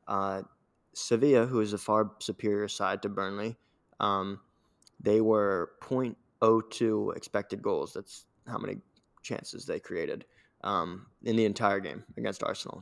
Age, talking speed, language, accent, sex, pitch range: 20-39, 135 wpm, English, American, male, 100-115 Hz